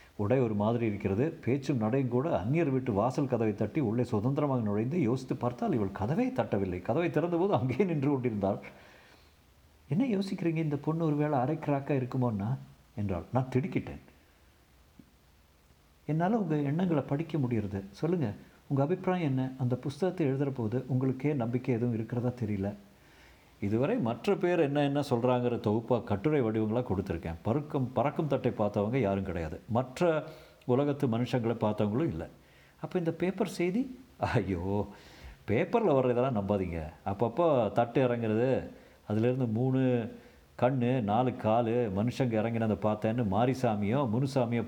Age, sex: 50-69, male